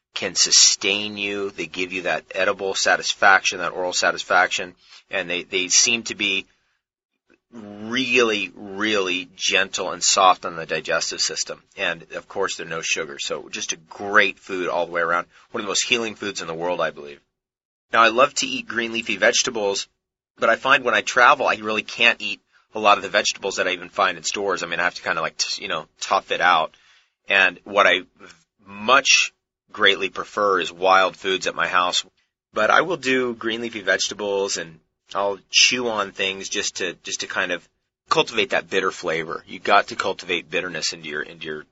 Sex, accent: male, American